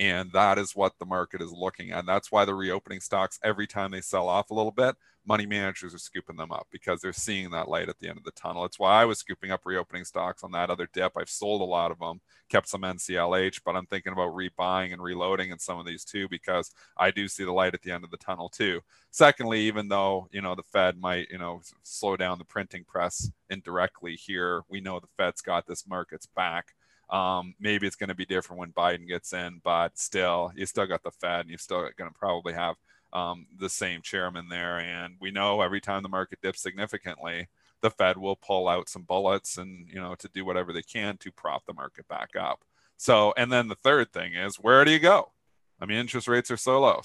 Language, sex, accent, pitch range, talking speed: English, male, American, 90-100 Hz, 240 wpm